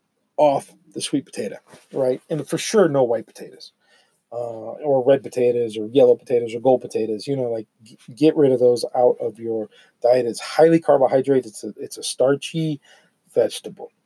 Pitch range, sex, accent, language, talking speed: 130-170 Hz, male, American, English, 180 wpm